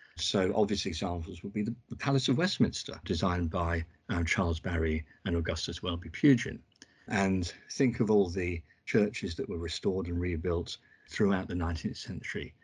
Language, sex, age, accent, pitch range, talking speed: English, male, 50-69, British, 85-110 Hz, 155 wpm